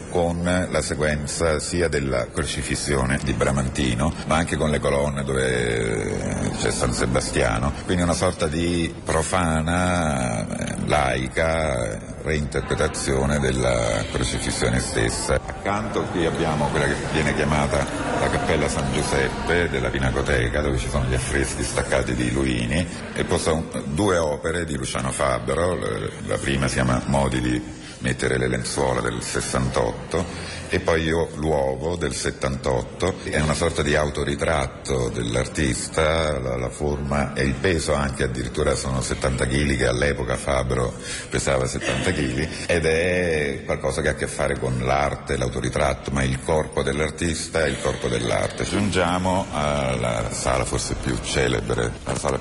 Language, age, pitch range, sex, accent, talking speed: Italian, 50-69, 65-80 Hz, male, native, 140 wpm